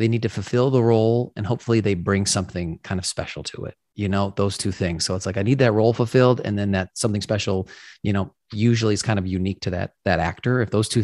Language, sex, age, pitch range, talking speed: English, male, 30-49, 100-120 Hz, 260 wpm